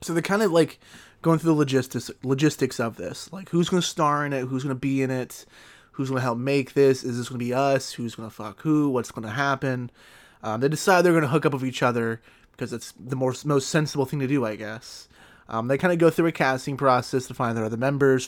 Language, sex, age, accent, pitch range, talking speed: English, male, 20-39, American, 125-150 Hz, 270 wpm